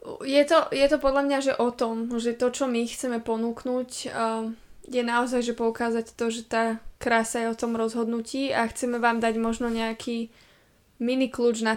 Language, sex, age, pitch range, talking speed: Slovak, female, 20-39, 225-240 Hz, 185 wpm